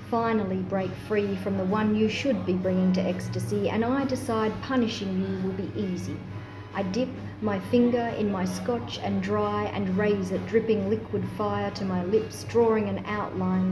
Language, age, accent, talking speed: English, 40-59, Australian, 180 wpm